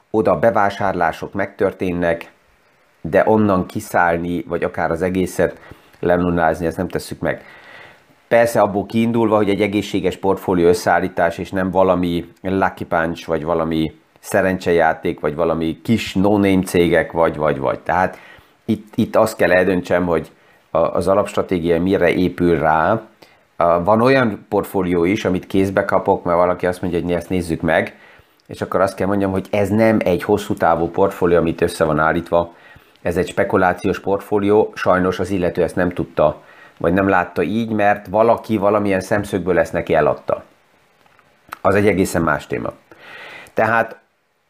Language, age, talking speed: Hungarian, 30-49, 145 wpm